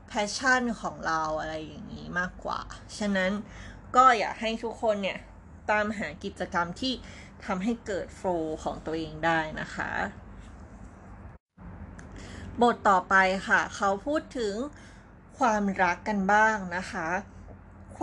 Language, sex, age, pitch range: Thai, female, 20-39, 170-230 Hz